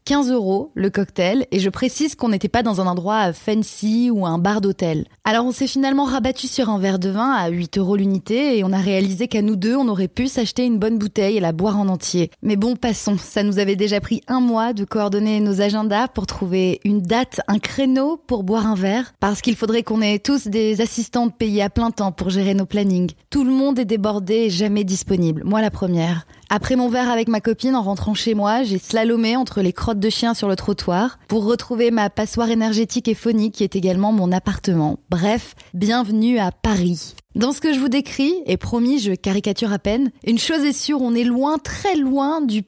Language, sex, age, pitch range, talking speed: French, female, 20-39, 200-245 Hz, 225 wpm